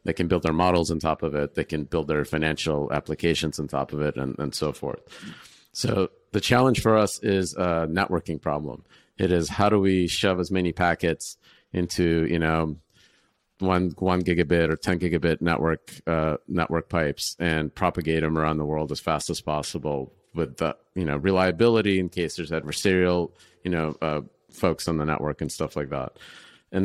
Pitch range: 80-95 Hz